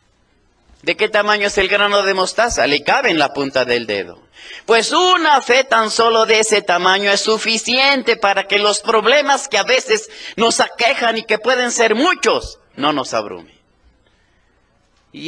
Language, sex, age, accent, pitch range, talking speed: Spanish, male, 30-49, Mexican, 150-220 Hz, 170 wpm